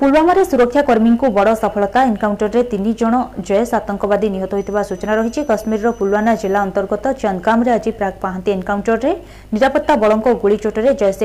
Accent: native